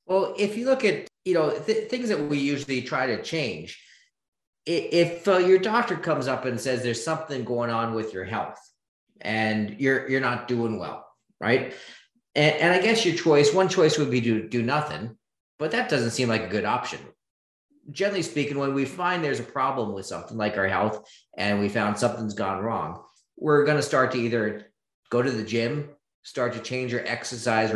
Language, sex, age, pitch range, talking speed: English, male, 40-59, 115-160 Hz, 195 wpm